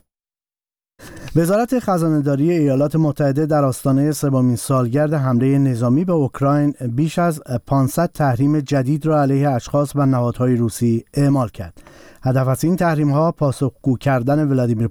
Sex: male